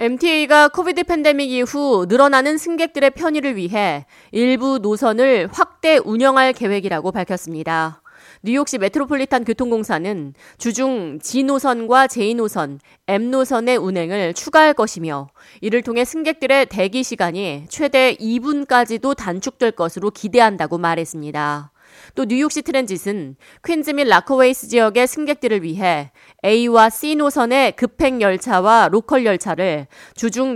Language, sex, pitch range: Korean, female, 185-270 Hz